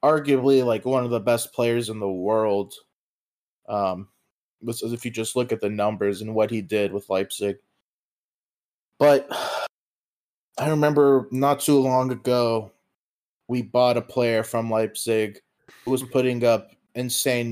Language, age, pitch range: English, 20-39, 110-125 Hz